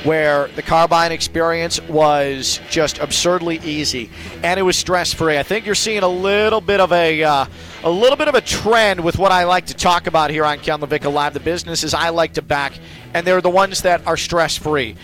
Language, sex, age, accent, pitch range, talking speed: English, male, 40-59, American, 150-185 Hz, 205 wpm